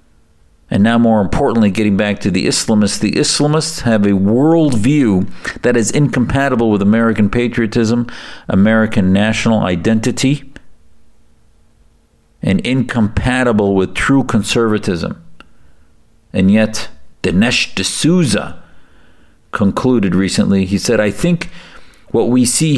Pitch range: 85-115 Hz